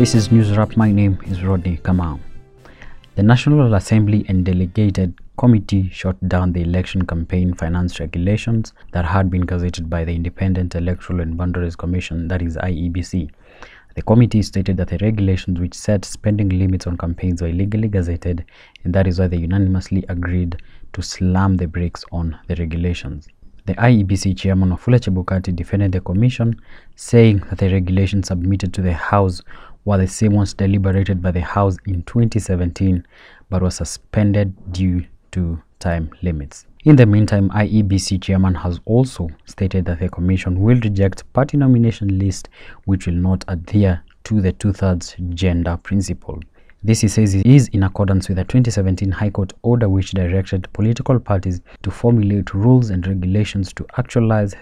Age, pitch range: 20-39, 90-105 Hz